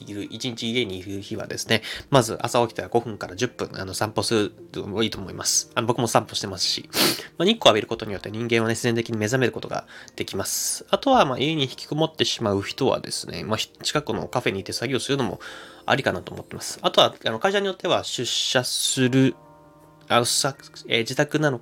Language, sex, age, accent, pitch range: Japanese, male, 20-39, native, 105-130 Hz